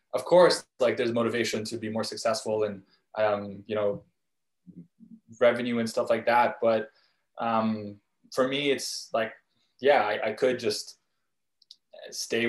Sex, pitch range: male, 110-130 Hz